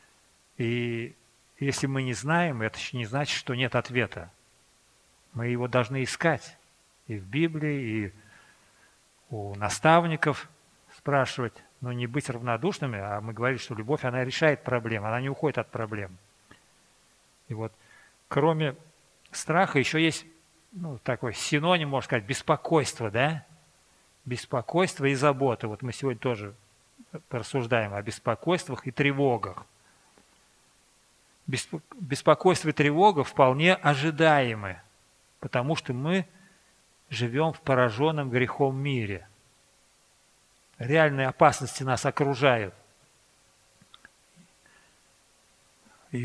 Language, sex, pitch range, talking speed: Russian, male, 120-150 Hz, 110 wpm